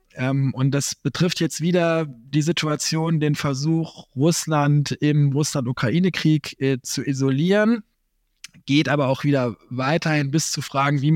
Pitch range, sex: 130-160 Hz, male